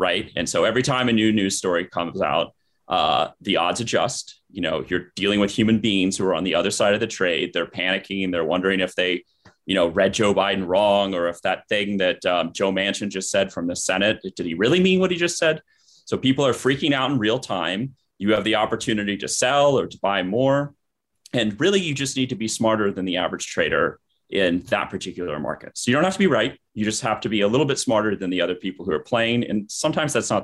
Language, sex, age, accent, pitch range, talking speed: English, male, 30-49, American, 95-120 Hz, 250 wpm